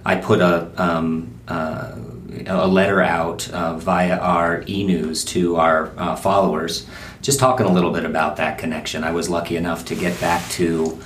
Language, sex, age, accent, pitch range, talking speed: English, male, 40-59, American, 80-90 Hz, 185 wpm